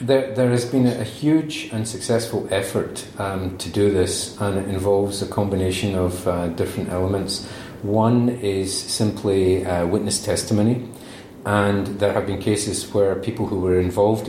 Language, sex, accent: English, male, British